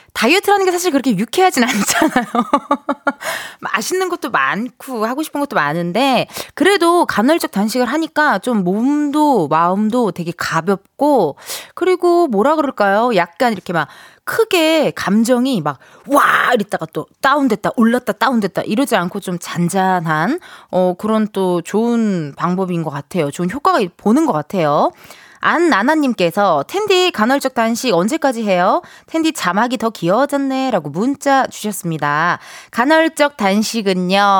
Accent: native